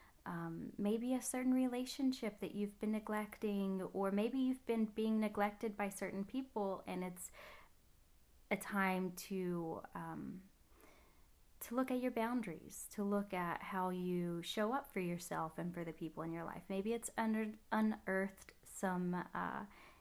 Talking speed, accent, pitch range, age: 150 wpm, American, 180-215 Hz, 20-39